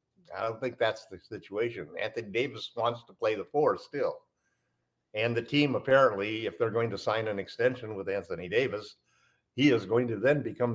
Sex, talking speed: male, 190 wpm